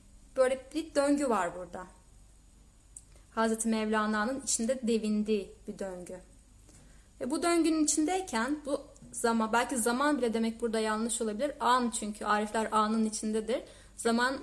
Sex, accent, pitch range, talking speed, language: female, native, 215-255 Hz, 125 wpm, Turkish